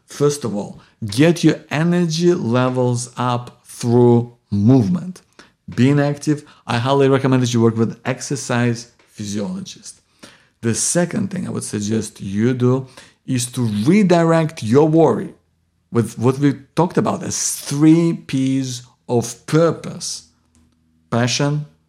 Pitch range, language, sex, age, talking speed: 115-160 Hz, English, male, 50-69, 125 wpm